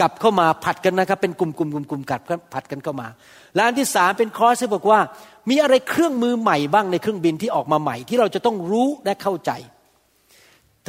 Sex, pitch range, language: male, 165-235 Hz, Thai